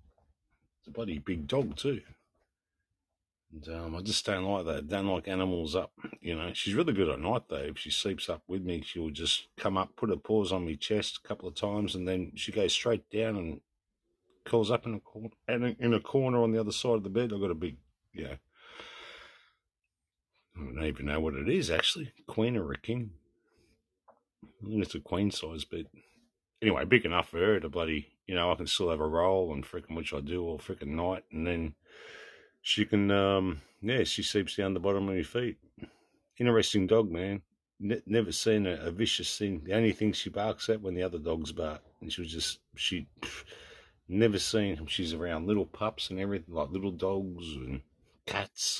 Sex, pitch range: male, 85-105 Hz